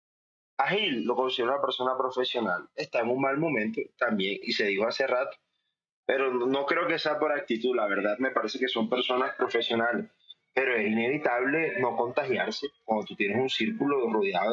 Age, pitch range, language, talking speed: 20-39, 115-150 Hz, Spanish, 180 wpm